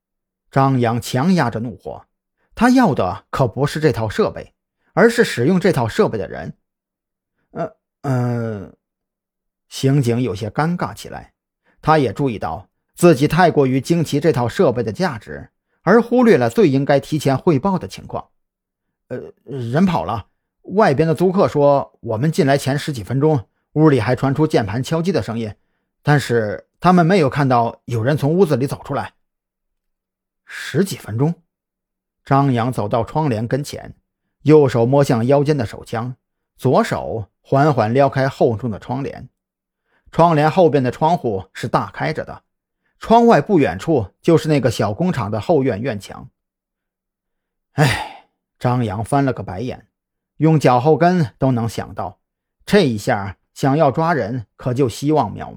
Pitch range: 115-155 Hz